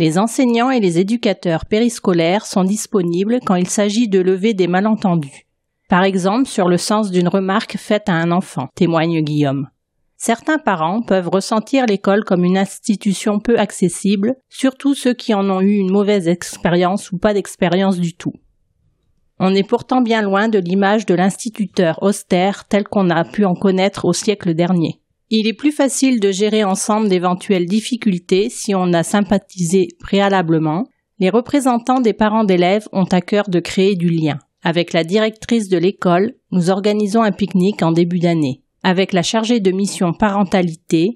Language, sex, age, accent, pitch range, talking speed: French, female, 40-59, French, 180-215 Hz, 170 wpm